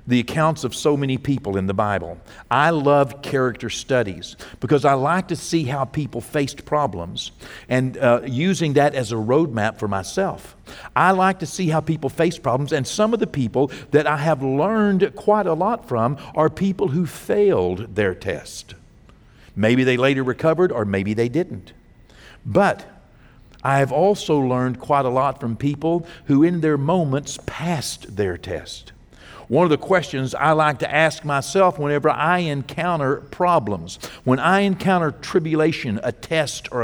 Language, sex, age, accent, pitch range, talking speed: English, male, 60-79, American, 120-160 Hz, 170 wpm